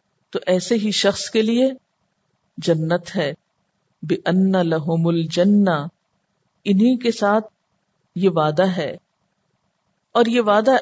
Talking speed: 115 wpm